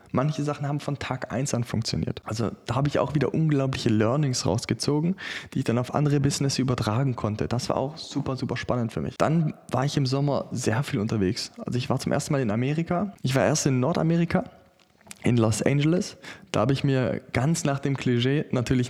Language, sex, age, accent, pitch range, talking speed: German, male, 20-39, German, 120-145 Hz, 210 wpm